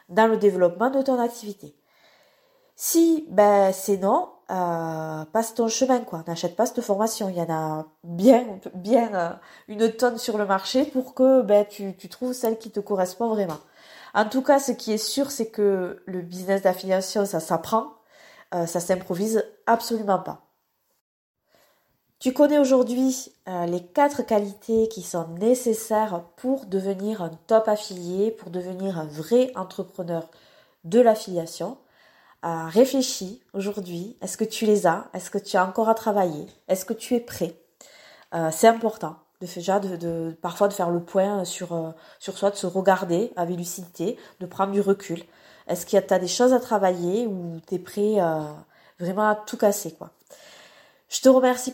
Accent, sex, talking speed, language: French, female, 175 wpm, French